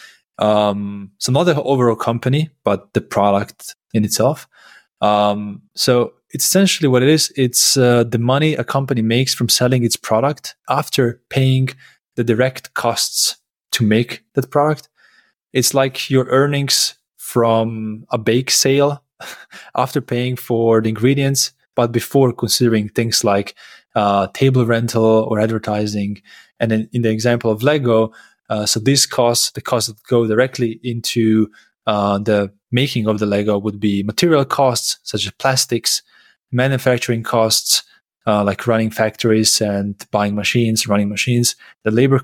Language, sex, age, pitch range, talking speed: English, male, 20-39, 110-135 Hz, 150 wpm